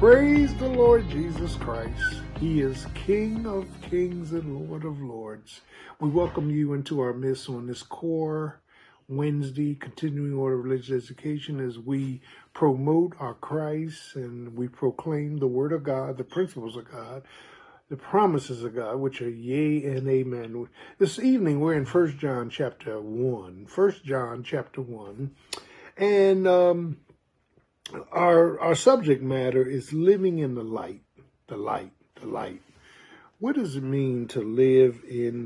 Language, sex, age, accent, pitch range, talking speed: English, male, 50-69, American, 125-160 Hz, 150 wpm